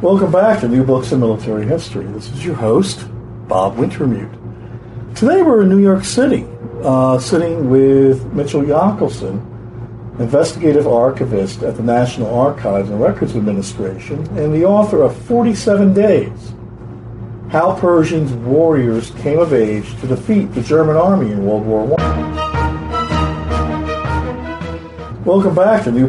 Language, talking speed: English, 135 wpm